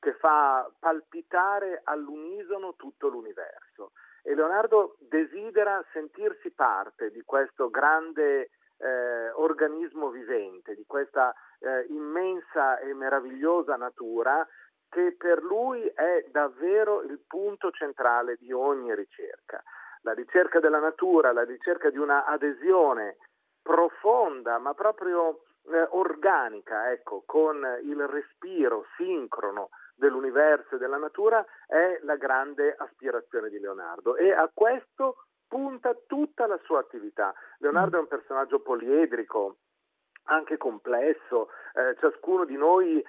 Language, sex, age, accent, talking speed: Italian, male, 50-69, native, 115 wpm